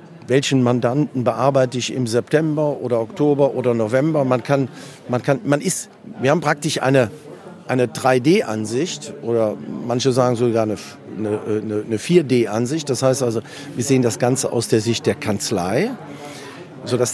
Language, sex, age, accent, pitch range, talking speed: German, male, 40-59, German, 115-145 Hz, 130 wpm